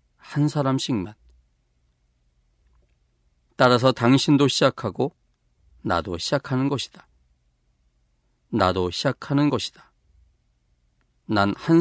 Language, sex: Korean, male